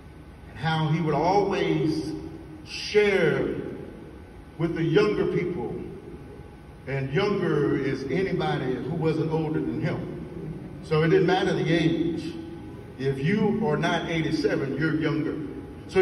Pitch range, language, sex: 140-180 Hz, English, male